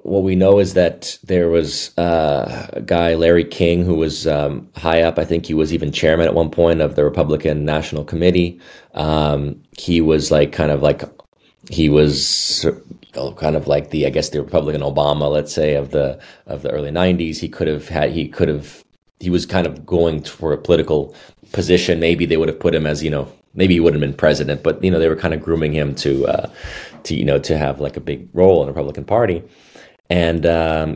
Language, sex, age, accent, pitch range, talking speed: English, male, 30-49, American, 75-85 Hz, 225 wpm